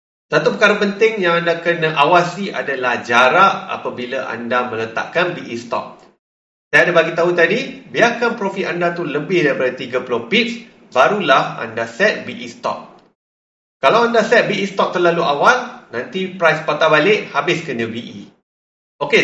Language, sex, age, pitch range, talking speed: Malay, male, 30-49, 130-195 Hz, 145 wpm